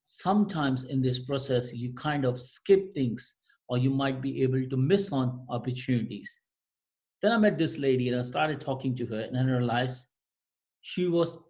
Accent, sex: Indian, male